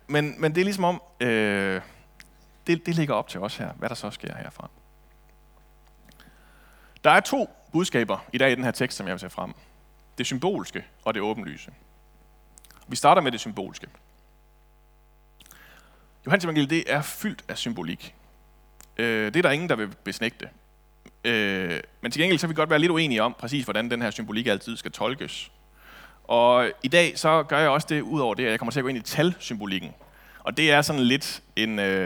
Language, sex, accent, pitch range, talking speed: Danish, male, native, 105-155 Hz, 190 wpm